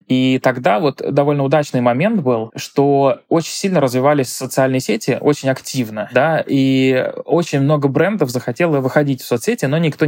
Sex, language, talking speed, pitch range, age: male, Russian, 155 wpm, 125-150 Hz, 20-39